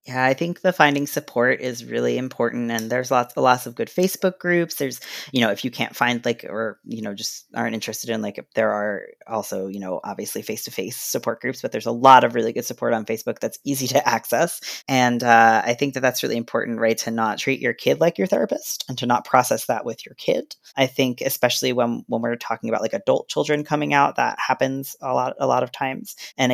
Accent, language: American, English